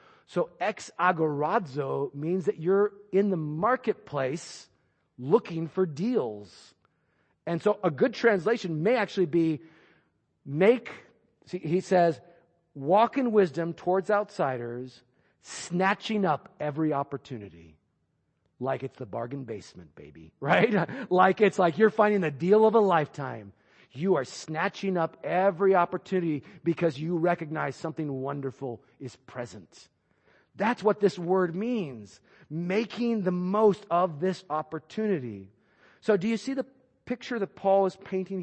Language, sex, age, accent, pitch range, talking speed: English, male, 40-59, American, 135-195 Hz, 130 wpm